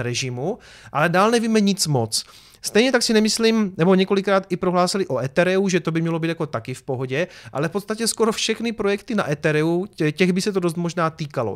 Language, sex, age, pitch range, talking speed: Czech, male, 30-49, 155-195 Hz, 210 wpm